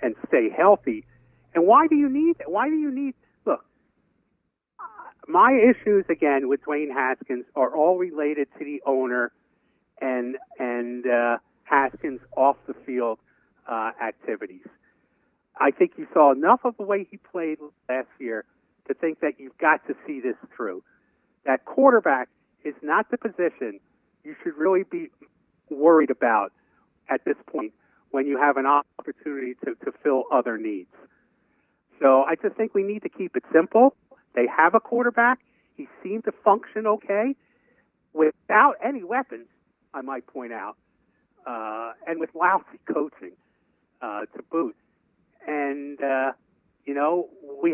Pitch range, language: 140-220 Hz, English